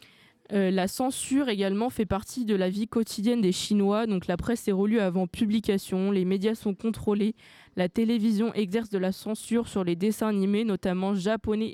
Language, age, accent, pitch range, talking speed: French, 20-39, French, 190-225 Hz, 180 wpm